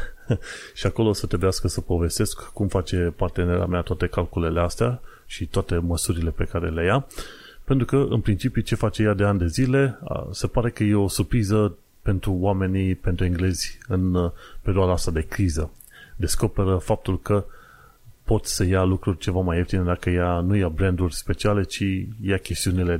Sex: male